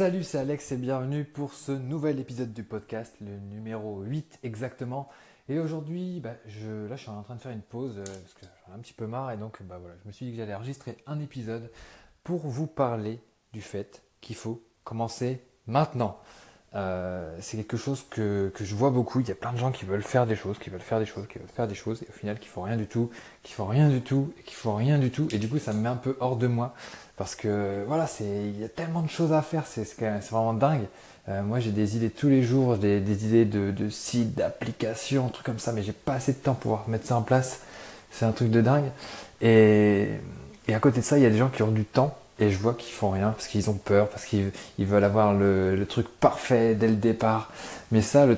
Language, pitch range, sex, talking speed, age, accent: French, 105-130 Hz, male, 265 wpm, 20-39, French